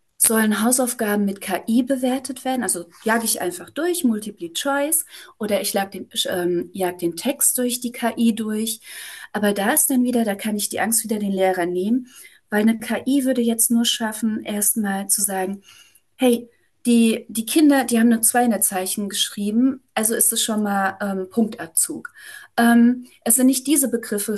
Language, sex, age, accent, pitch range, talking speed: German, female, 30-49, German, 205-255 Hz, 170 wpm